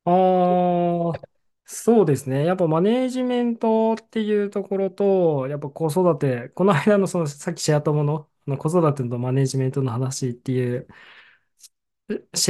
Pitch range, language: 130-180 Hz, Japanese